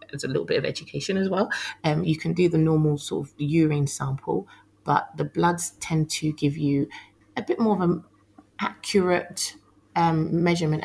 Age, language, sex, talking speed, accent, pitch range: 30-49, English, female, 190 wpm, British, 145-175 Hz